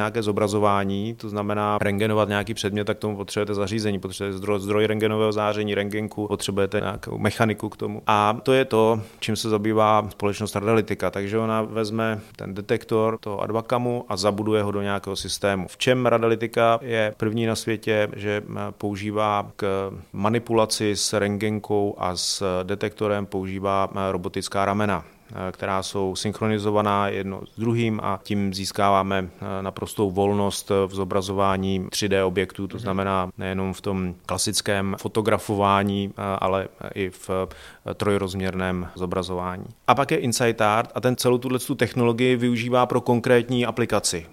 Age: 30-49